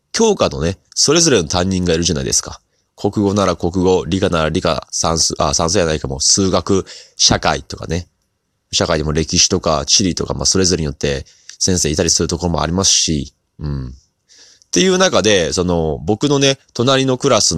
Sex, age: male, 20-39